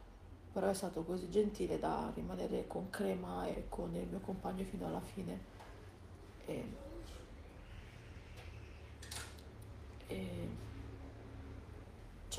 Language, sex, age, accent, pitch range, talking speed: Italian, female, 40-59, native, 90-120 Hz, 85 wpm